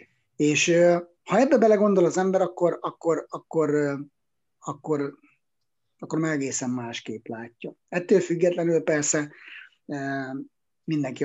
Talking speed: 100 wpm